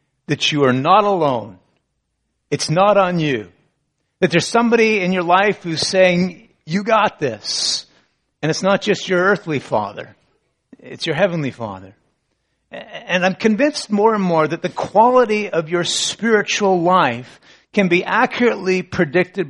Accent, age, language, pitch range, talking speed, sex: American, 50-69, English, 140-190 Hz, 150 wpm, male